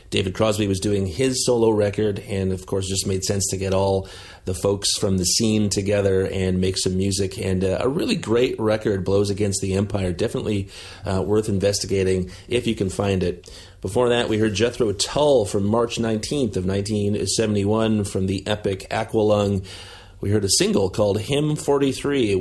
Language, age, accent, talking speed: English, 30-49, American, 175 wpm